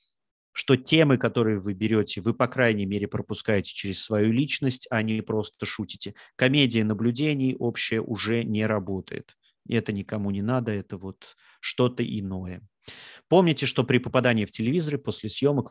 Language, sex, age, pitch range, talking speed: Russian, male, 30-49, 100-125 Hz, 150 wpm